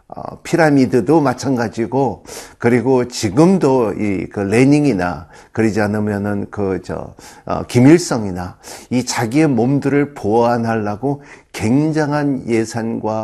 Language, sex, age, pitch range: Korean, male, 50-69, 110-145 Hz